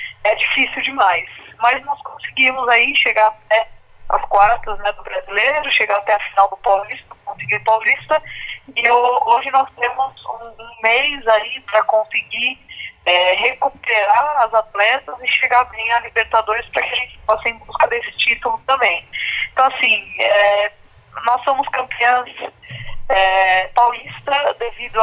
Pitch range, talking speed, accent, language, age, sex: 205-260 Hz, 150 wpm, Brazilian, Portuguese, 20-39, female